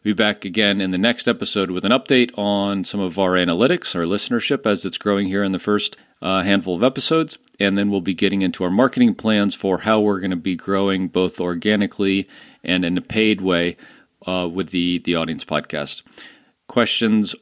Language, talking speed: English, 200 wpm